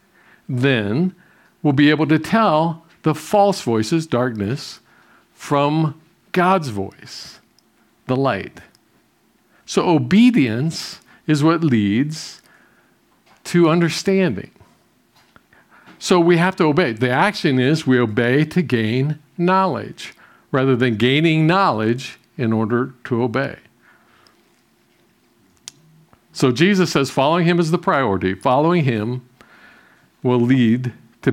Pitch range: 120-165 Hz